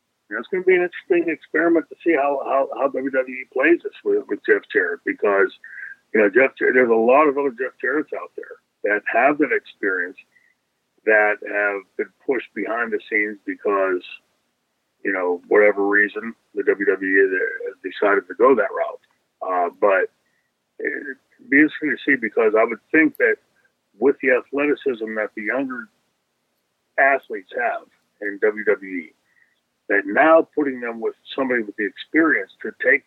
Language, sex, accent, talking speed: English, male, American, 165 wpm